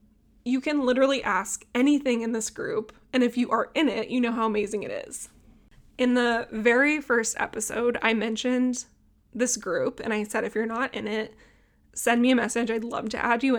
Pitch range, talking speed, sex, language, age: 225-255 Hz, 205 wpm, female, English, 20-39